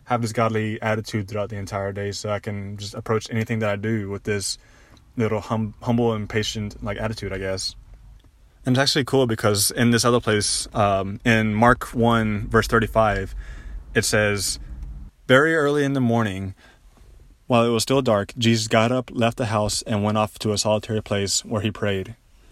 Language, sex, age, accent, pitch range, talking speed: English, male, 20-39, American, 95-110 Hz, 185 wpm